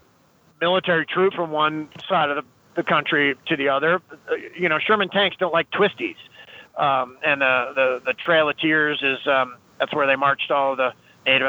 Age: 30-49